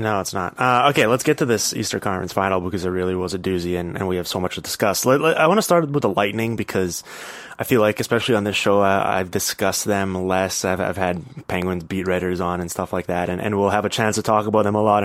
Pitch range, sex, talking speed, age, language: 95-115 Hz, male, 285 wpm, 20-39, English